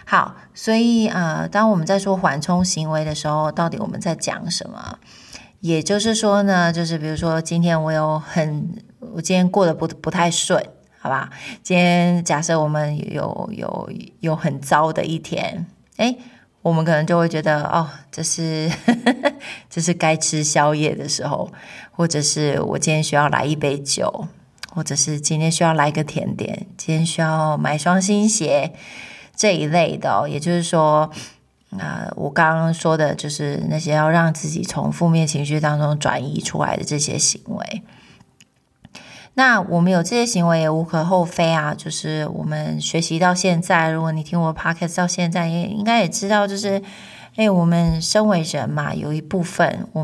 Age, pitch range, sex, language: 20-39, 155-185 Hz, female, Chinese